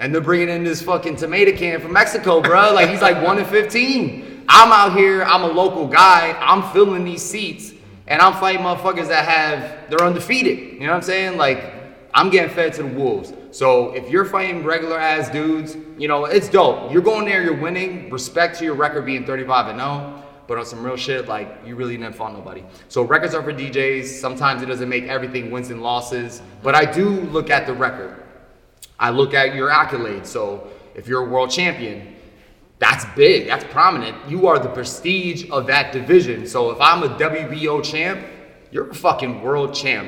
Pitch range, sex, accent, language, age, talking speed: 125-175 Hz, male, American, English, 20-39, 205 wpm